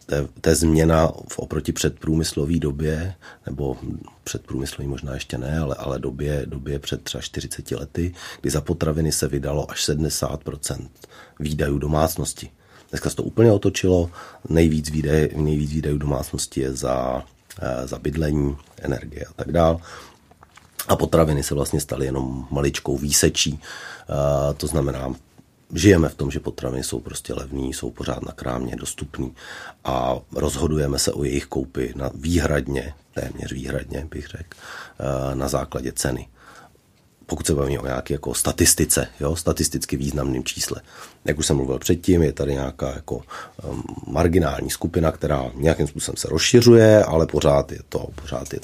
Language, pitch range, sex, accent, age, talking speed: Czech, 70-80 Hz, male, native, 40-59, 140 wpm